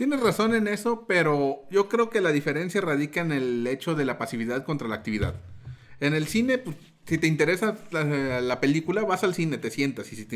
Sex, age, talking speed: male, 30-49, 220 wpm